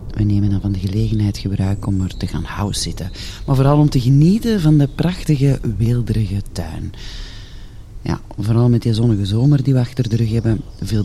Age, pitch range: 30-49, 100-125 Hz